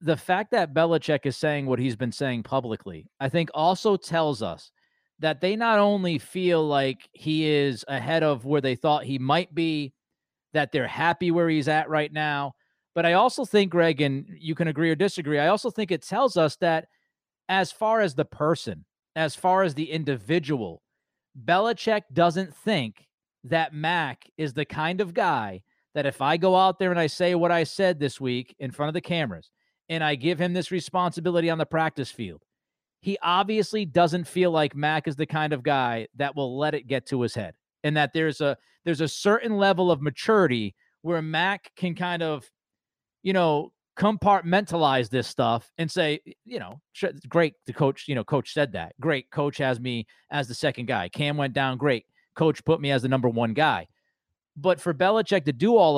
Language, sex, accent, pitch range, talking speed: English, male, American, 140-175 Hz, 195 wpm